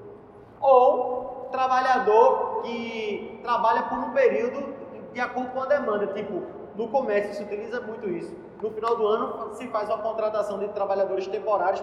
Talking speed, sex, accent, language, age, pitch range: 150 wpm, male, Brazilian, Portuguese, 20-39, 215-295 Hz